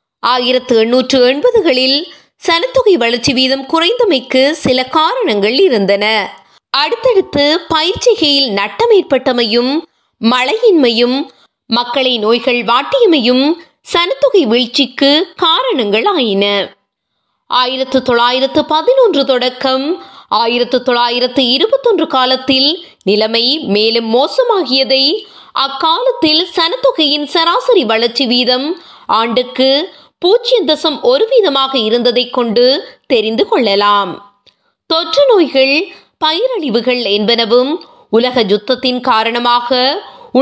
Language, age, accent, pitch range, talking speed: Tamil, 20-39, native, 245-340 Hz, 50 wpm